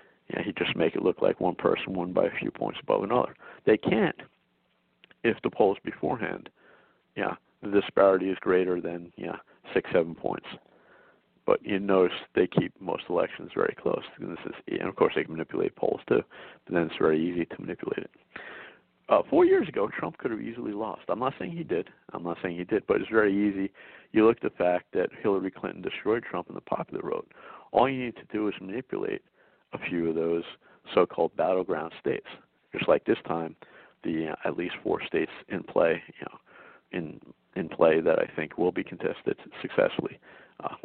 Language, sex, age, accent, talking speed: English, male, 50-69, American, 200 wpm